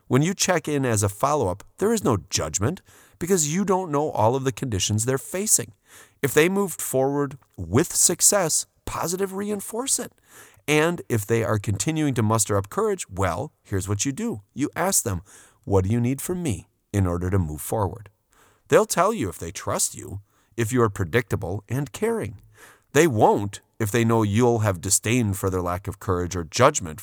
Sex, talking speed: male, 190 wpm